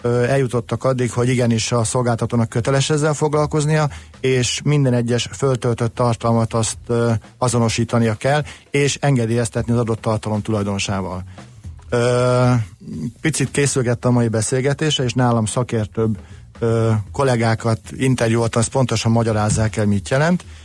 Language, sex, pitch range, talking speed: Hungarian, male, 110-130 Hz, 115 wpm